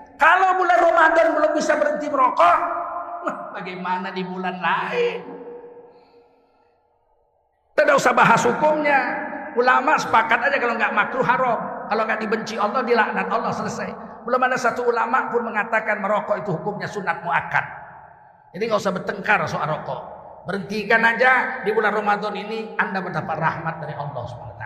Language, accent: Indonesian, native